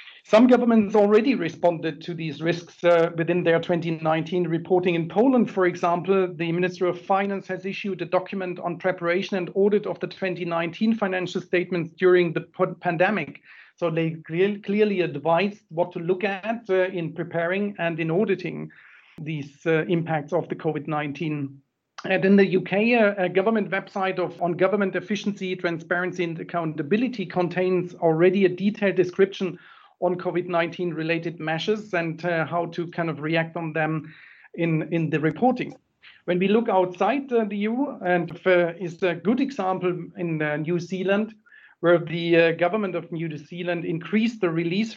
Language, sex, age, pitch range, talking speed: English, male, 40-59, 170-195 Hz, 160 wpm